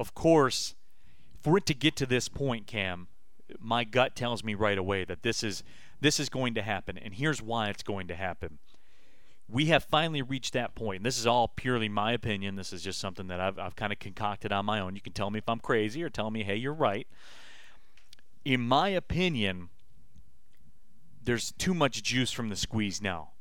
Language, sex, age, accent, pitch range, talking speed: English, male, 30-49, American, 100-130 Hz, 210 wpm